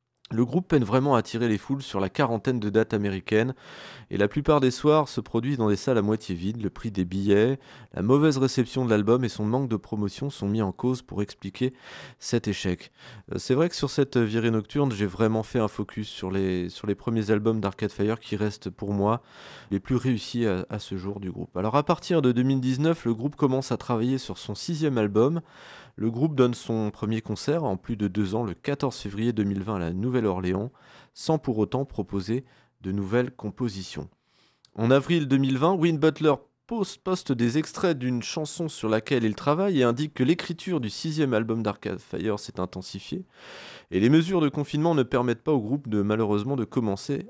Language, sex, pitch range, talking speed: French, male, 105-135 Hz, 205 wpm